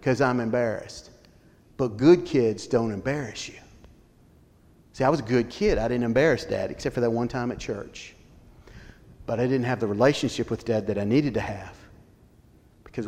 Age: 40-59